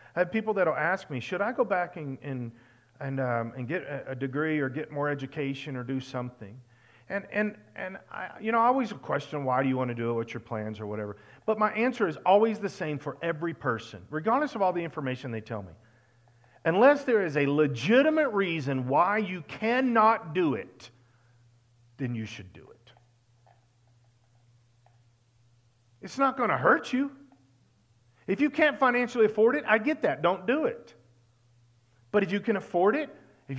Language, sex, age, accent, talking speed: English, male, 40-59, American, 190 wpm